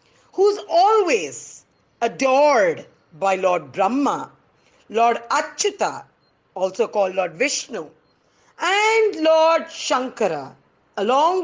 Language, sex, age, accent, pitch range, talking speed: English, female, 50-69, Indian, 215-335 Hz, 85 wpm